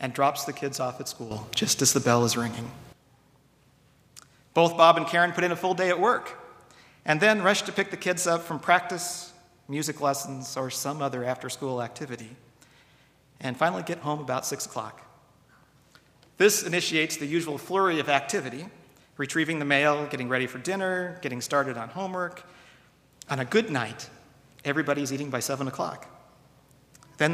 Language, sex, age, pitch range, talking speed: English, male, 40-59, 130-160 Hz, 165 wpm